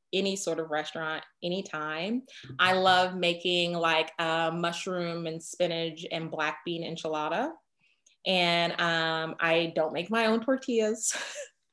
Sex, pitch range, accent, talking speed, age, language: female, 165-205 Hz, American, 130 wpm, 20-39, English